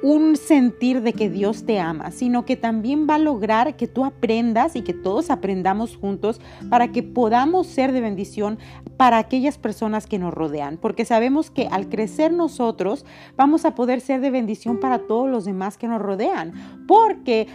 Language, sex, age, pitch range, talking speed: Spanish, female, 40-59, 200-260 Hz, 180 wpm